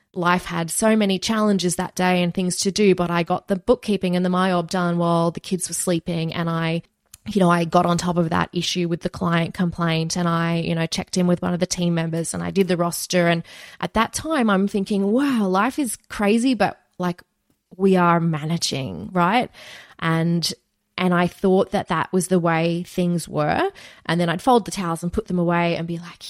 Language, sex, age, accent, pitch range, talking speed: English, female, 20-39, Australian, 170-200 Hz, 220 wpm